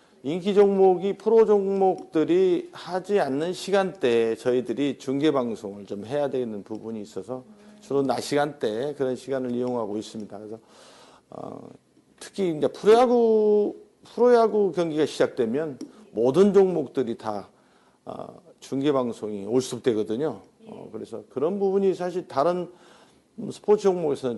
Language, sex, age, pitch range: Korean, male, 50-69, 120-185 Hz